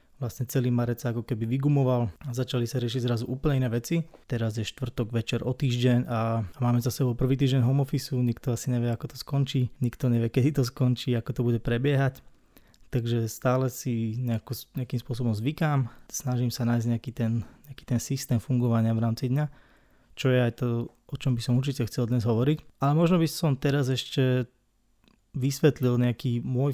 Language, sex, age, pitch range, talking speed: Slovak, male, 20-39, 115-130 Hz, 185 wpm